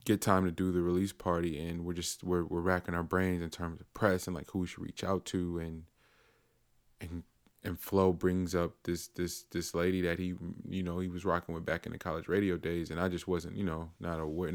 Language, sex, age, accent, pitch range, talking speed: English, male, 20-39, American, 85-95 Hz, 245 wpm